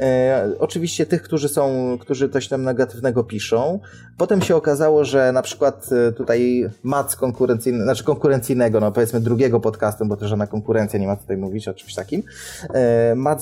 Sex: male